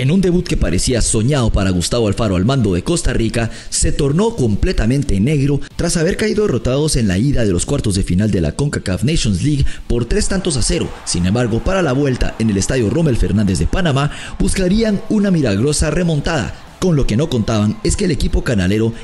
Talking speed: 210 wpm